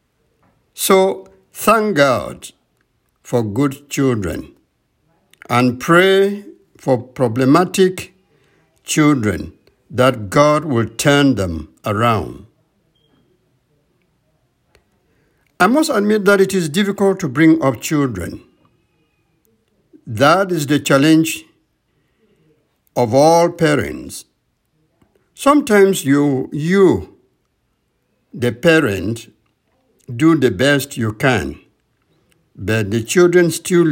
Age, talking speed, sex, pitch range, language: 60-79, 85 wpm, male, 120-170 Hz, English